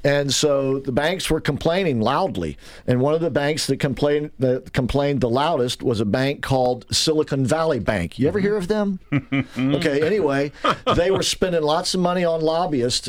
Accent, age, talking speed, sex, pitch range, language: American, 50-69, 185 wpm, male, 130-160 Hz, English